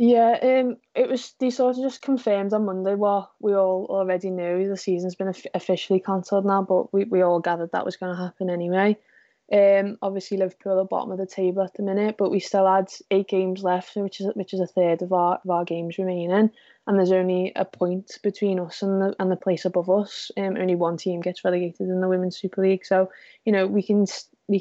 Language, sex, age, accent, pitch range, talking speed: English, female, 20-39, British, 180-200 Hz, 230 wpm